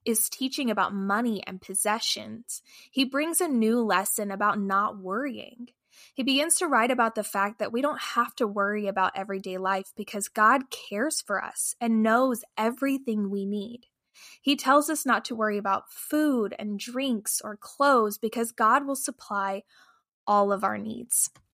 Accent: American